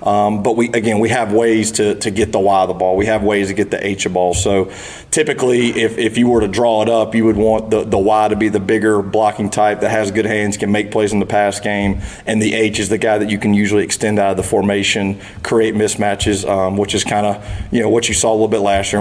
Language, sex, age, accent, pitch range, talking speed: English, male, 30-49, American, 95-110 Hz, 285 wpm